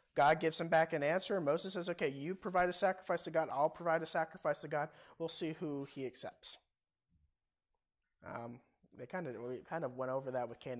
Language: English